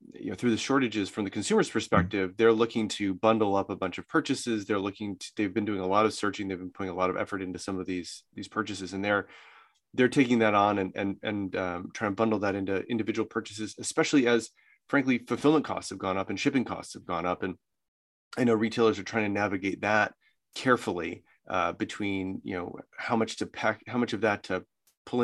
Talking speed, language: 230 wpm, English